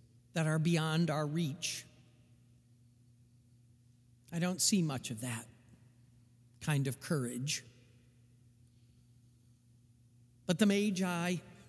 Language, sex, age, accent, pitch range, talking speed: English, male, 50-69, American, 120-185 Hz, 85 wpm